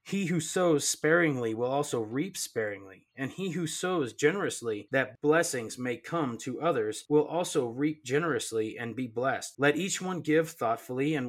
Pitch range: 125-155 Hz